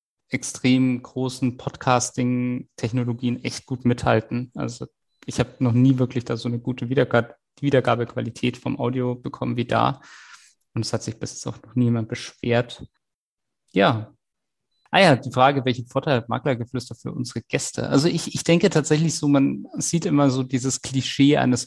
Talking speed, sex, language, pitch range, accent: 160 wpm, male, German, 125-140 Hz, German